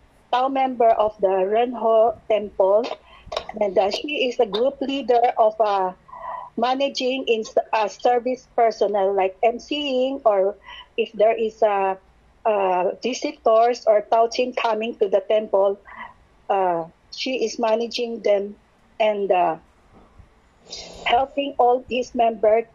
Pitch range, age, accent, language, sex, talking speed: 210-280 Hz, 50-69, Filipino, English, female, 125 wpm